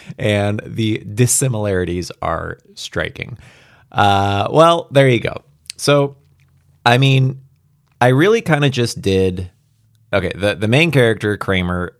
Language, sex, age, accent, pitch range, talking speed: English, male, 30-49, American, 100-145 Hz, 125 wpm